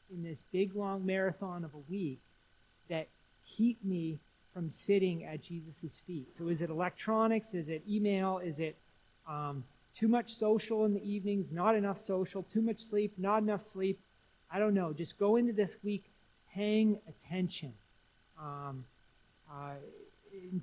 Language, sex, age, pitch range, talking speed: English, male, 40-59, 160-215 Hz, 155 wpm